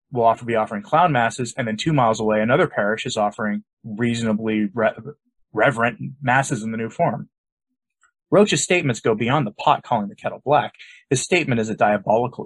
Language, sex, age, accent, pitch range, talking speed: English, male, 30-49, American, 110-180 Hz, 180 wpm